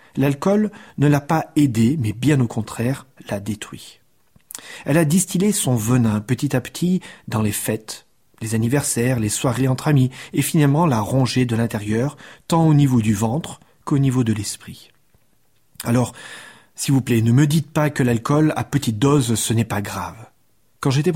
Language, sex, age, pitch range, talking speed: French, male, 40-59, 115-150 Hz, 175 wpm